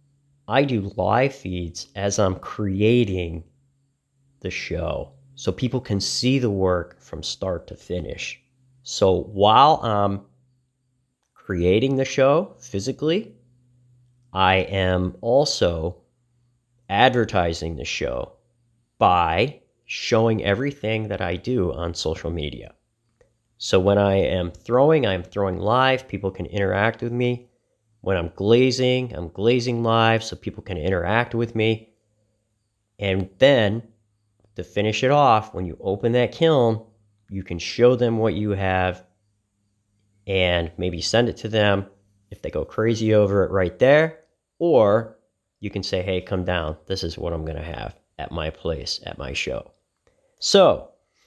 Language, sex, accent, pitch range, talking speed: English, male, American, 95-120 Hz, 140 wpm